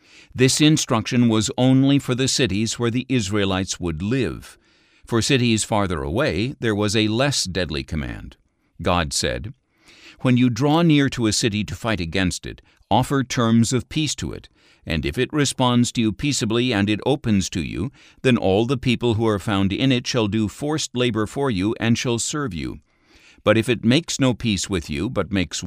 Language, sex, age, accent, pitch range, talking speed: English, male, 60-79, American, 90-120 Hz, 190 wpm